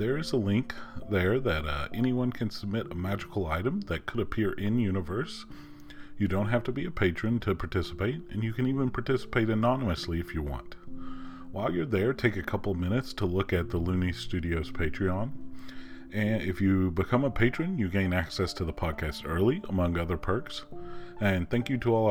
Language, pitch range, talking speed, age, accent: English, 90-120 Hz, 190 wpm, 40-59, American